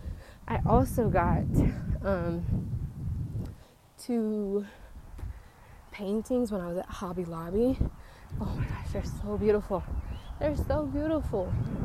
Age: 20-39